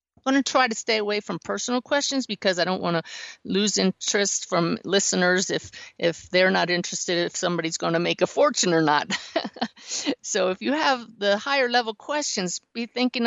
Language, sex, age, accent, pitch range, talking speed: English, female, 50-69, American, 170-230 Hz, 195 wpm